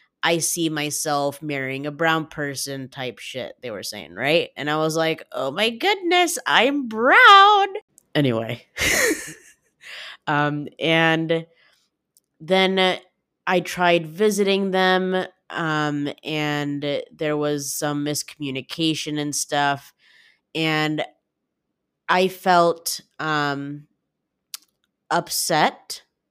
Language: English